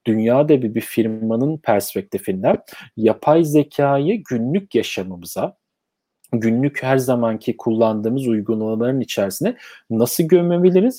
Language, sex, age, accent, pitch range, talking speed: Turkish, male, 40-59, native, 110-150 Hz, 85 wpm